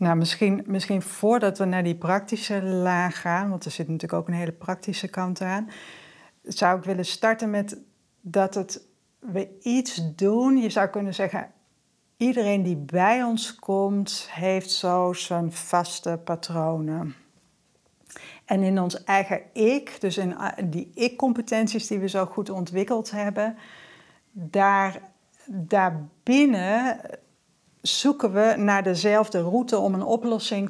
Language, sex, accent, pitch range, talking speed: Dutch, female, Dutch, 180-215 Hz, 135 wpm